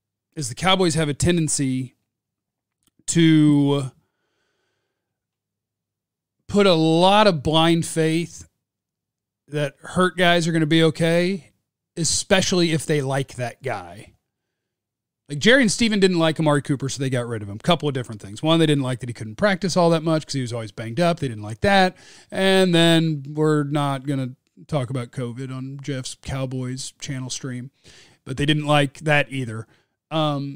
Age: 40-59